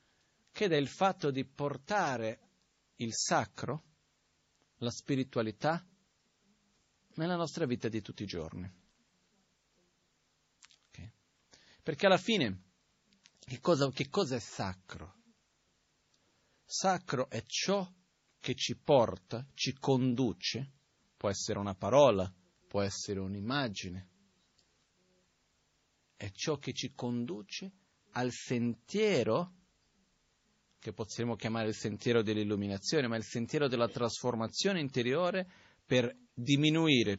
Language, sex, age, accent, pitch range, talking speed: Italian, male, 50-69, native, 105-145 Hz, 100 wpm